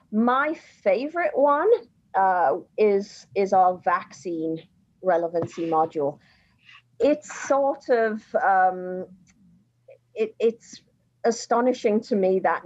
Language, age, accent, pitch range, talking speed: English, 50-69, British, 175-225 Hz, 90 wpm